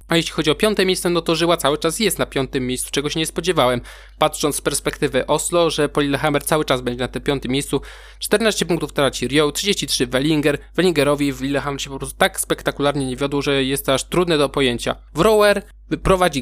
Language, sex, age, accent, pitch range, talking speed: Polish, male, 20-39, native, 135-165 Hz, 210 wpm